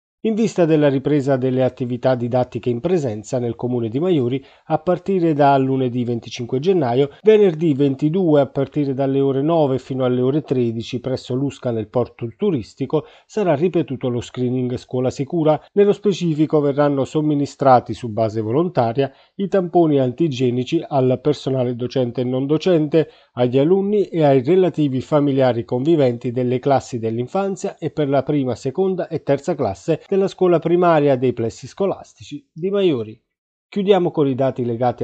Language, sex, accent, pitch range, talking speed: Italian, male, native, 125-160 Hz, 150 wpm